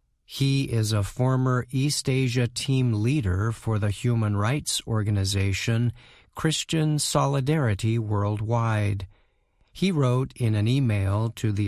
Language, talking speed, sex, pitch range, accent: English, 120 wpm, male, 110-130 Hz, American